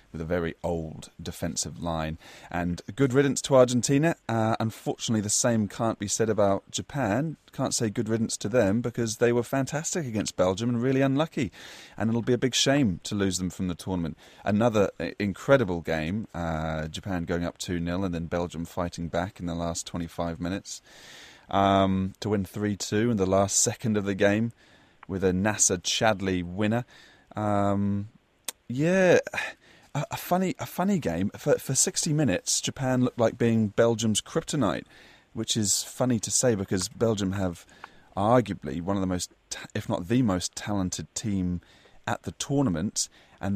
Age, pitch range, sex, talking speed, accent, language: 30-49, 90-115 Hz, male, 165 wpm, British, English